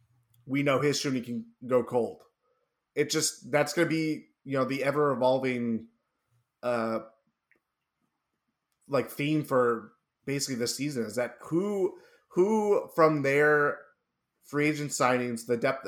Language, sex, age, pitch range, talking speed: English, male, 20-39, 120-140 Hz, 130 wpm